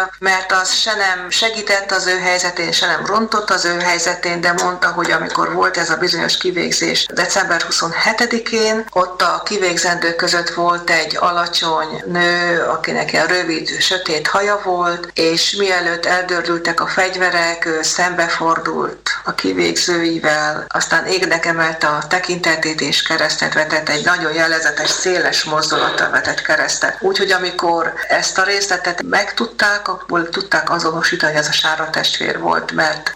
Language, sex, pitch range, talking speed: Hungarian, female, 165-190 Hz, 140 wpm